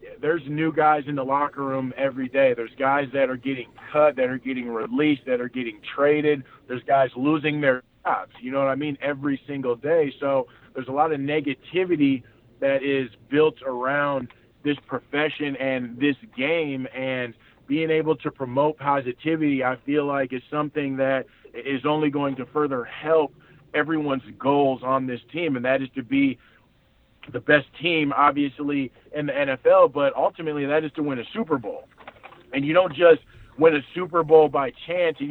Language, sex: English, male